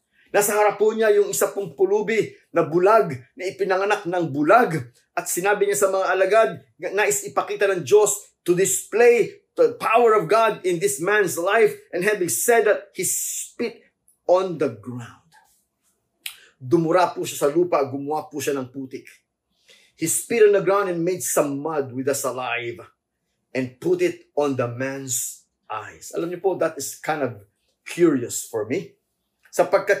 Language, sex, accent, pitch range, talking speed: English, male, Filipino, 145-205 Hz, 160 wpm